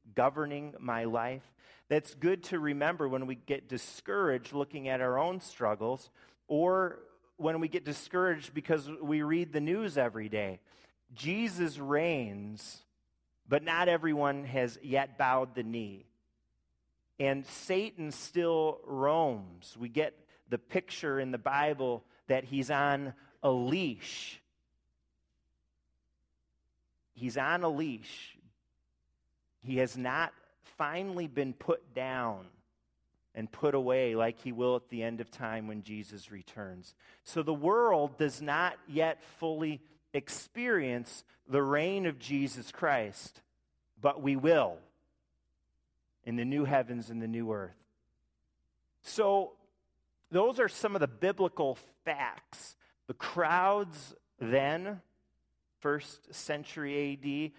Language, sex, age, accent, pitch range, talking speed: English, male, 30-49, American, 105-155 Hz, 120 wpm